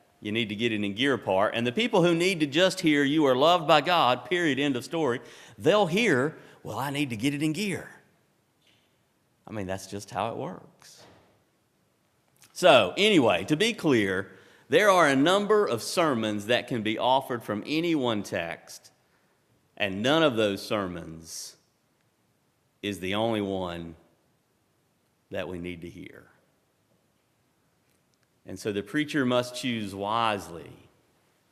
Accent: American